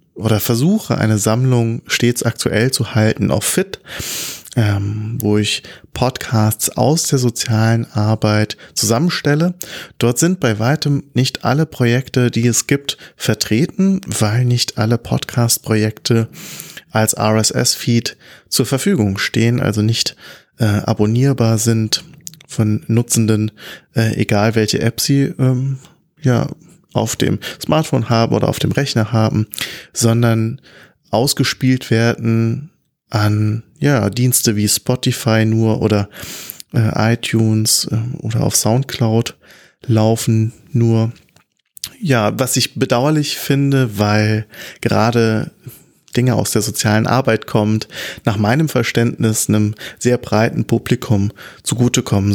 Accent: German